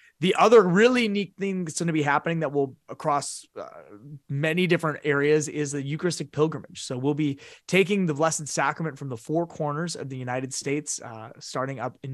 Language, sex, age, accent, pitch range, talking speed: English, male, 30-49, American, 130-165 Hz, 200 wpm